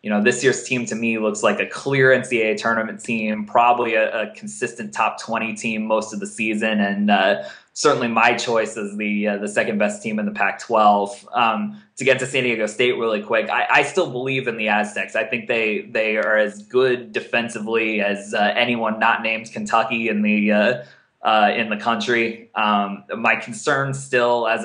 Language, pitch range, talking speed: English, 110-130 Hz, 200 wpm